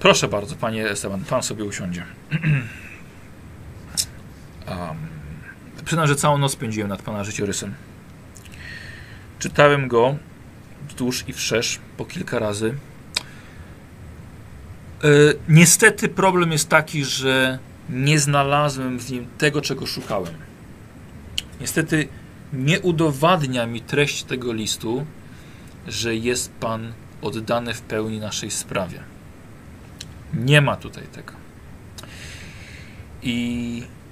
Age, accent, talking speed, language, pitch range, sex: 40-59, native, 95 wpm, Polish, 105-145 Hz, male